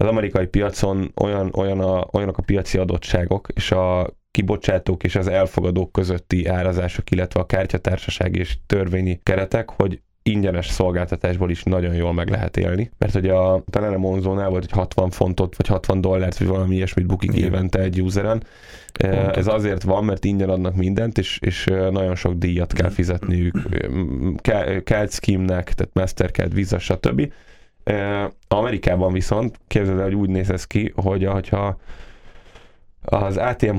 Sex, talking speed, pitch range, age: male, 155 wpm, 95-105 Hz, 10-29